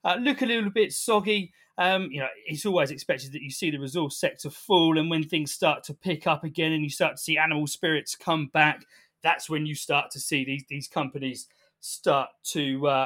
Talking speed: 220 wpm